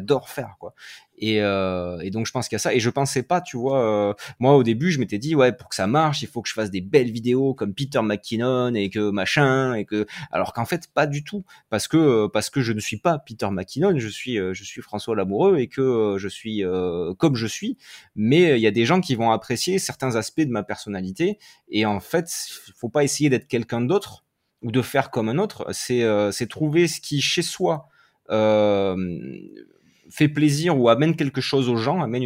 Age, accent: 20-39, French